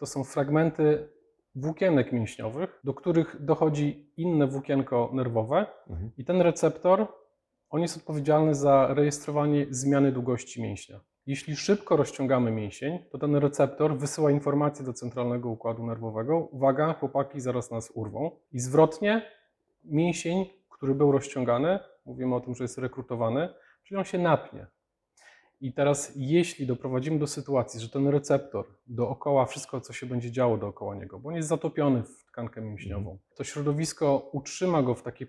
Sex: male